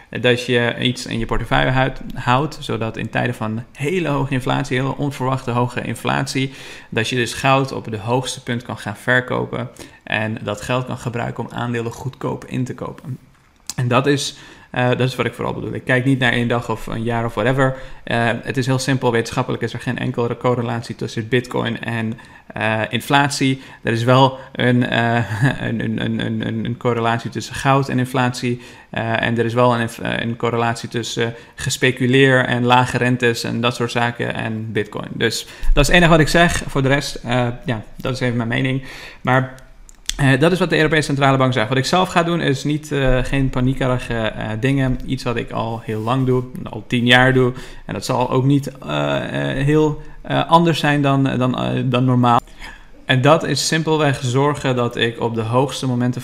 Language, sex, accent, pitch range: Dutch, male, Dutch, 115-135 Hz